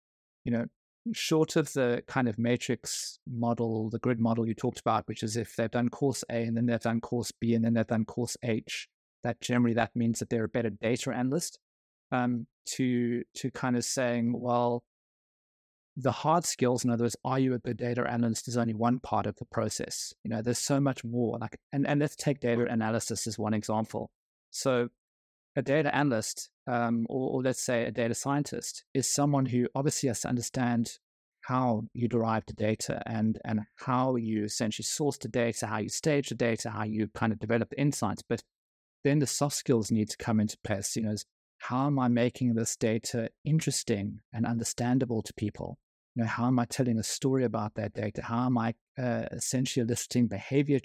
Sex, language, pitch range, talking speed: male, English, 115-125 Hz, 205 wpm